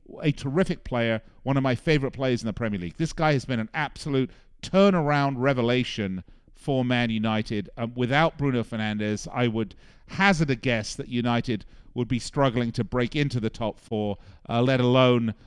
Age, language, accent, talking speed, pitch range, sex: 50-69, English, British, 180 wpm, 115-155 Hz, male